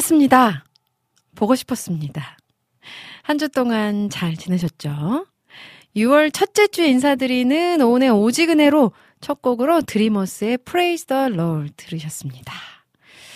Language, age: Korean, 40-59